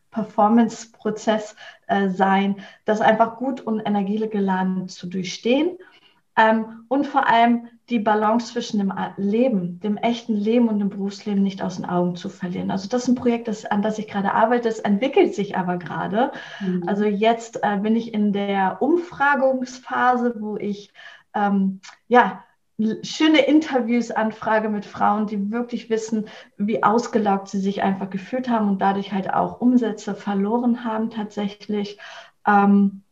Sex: female